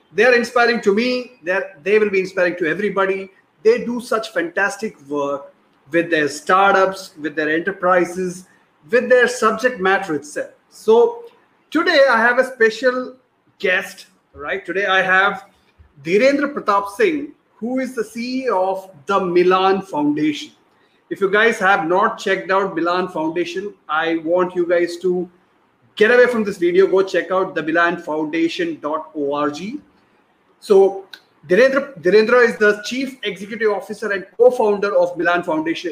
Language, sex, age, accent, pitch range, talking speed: English, male, 30-49, Indian, 180-240 Hz, 145 wpm